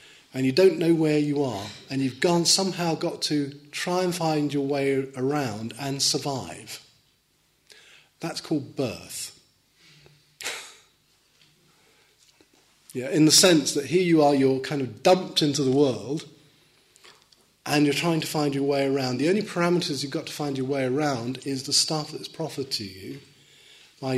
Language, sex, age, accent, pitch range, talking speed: English, male, 40-59, British, 130-155 Hz, 160 wpm